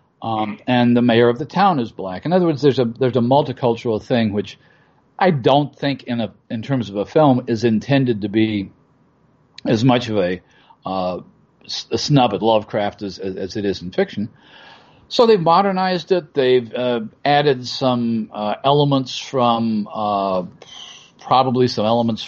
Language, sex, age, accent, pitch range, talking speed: English, male, 50-69, American, 115-145 Hz, 170 wpm